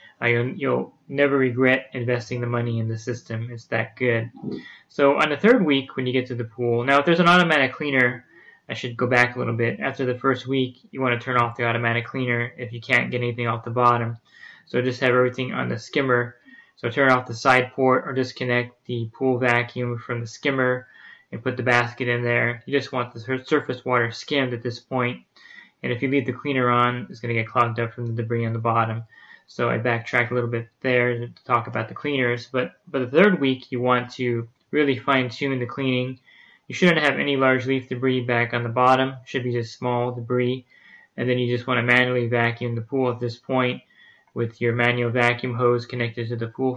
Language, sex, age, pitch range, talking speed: English, male, 20-39, 120-130 Hz, 225 wpm